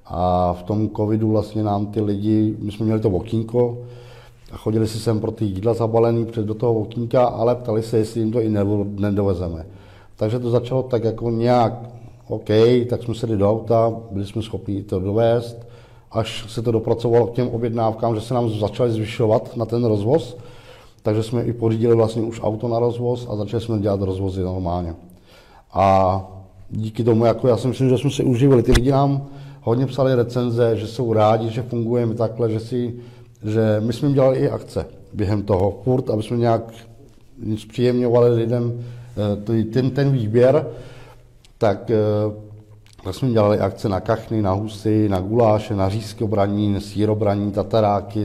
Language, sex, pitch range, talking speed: Czech, male, 105-120 Hz, 170 wpm